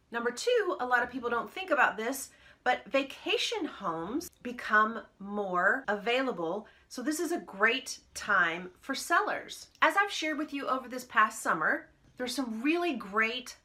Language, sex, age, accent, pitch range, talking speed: English, female, 30-49, American, 210-280 Hz, 165 wpm